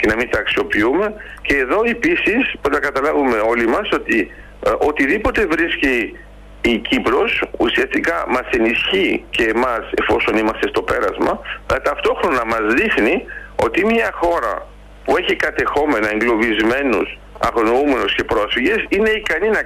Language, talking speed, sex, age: Greek, 135 wpm, male, 60-79